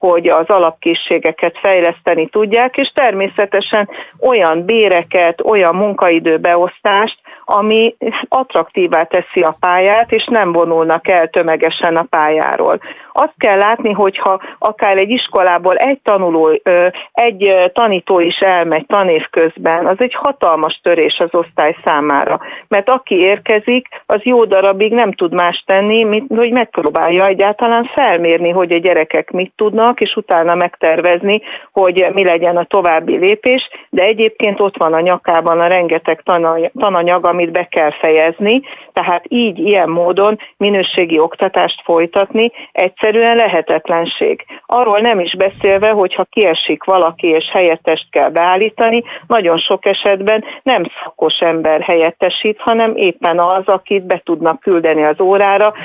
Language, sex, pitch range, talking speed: Hungarian, female, 170-215 Hz, 130 wpm